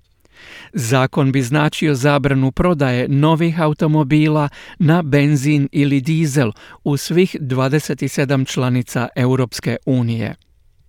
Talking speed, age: 95 wpm, 50-69